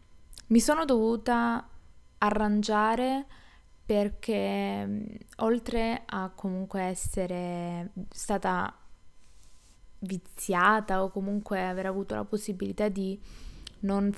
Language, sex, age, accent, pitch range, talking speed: Italian, female, 20-39, native, 190-215 Hz, 80 wpm